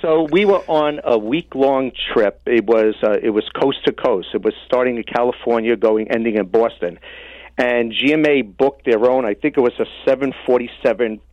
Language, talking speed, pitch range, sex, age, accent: English, 190 wpm, 115-150 Hz, male, 50-69, American